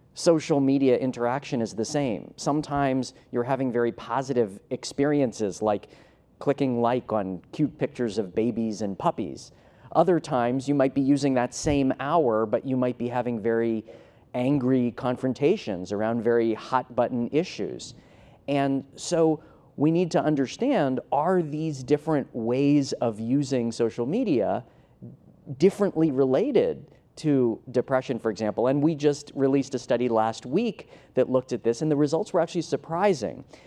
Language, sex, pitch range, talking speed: English, male, 120-155 Hz, 145 wpm